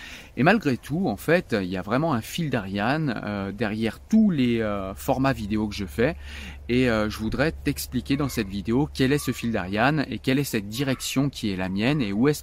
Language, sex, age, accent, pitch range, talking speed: French, male, 30-49, French, 110-135 Hz, 225 wpm